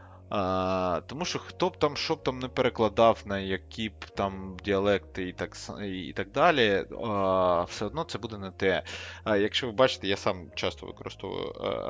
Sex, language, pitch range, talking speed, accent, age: male, Ukrainian, 95-115 Hz, 180 wpm, native, 20-39